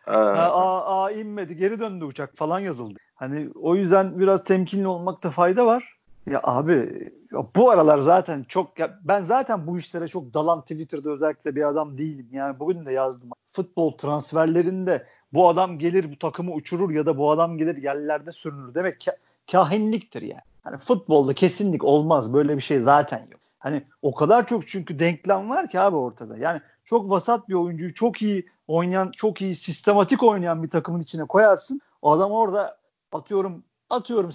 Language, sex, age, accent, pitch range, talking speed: Turkish, male, 50-69, native, 155-200 Hz, 175 wpm